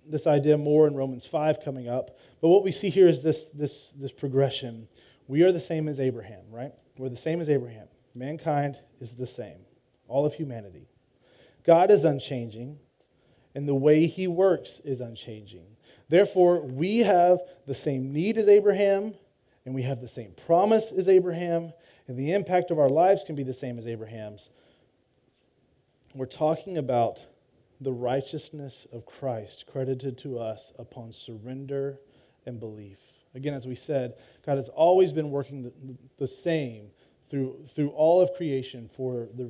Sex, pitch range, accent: male, 130-170 Hz, American